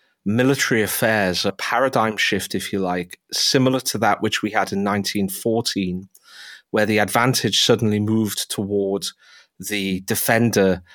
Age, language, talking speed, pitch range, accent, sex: 30-49, English, 130 wpm, 95-115 Hz, British, male